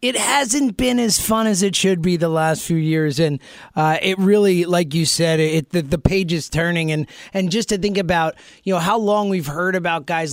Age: 30-49